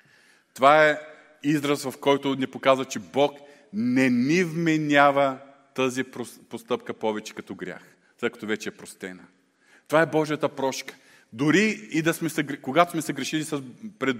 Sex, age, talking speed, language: male, 40-59, 150 wpm, Bulgarian